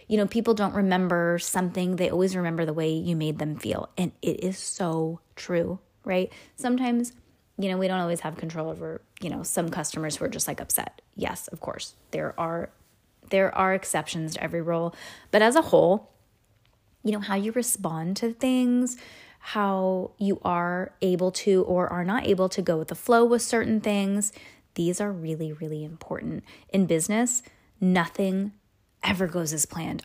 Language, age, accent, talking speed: English, 20-39, American, 180 wpm